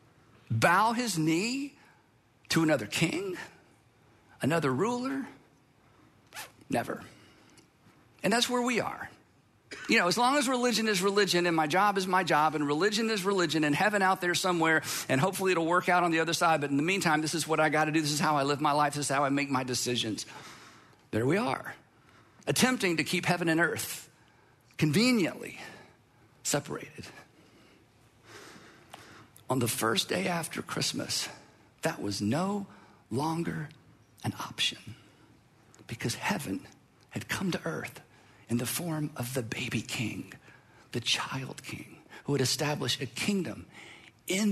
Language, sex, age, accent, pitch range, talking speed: English, male, 50-69, American, 130-185 Hz, 155 wpm